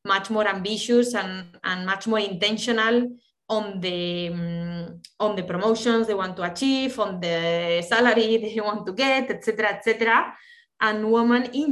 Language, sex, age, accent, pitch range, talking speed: English, female, 20-39, Spanish, 190-230 Hz, 165 wpm